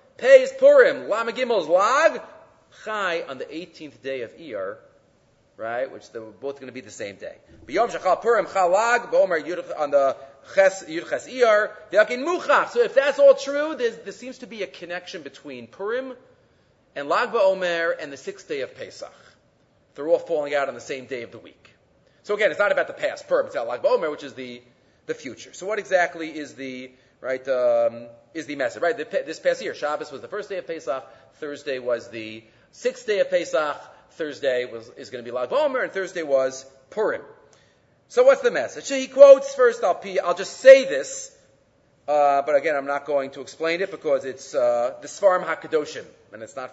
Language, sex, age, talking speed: English, male, 30-49, 200 wpm